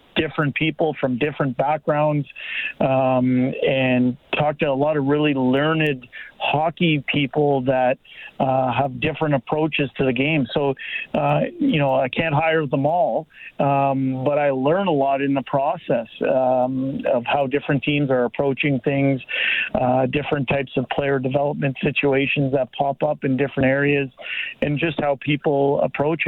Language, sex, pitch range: English, male, 135-150 Hz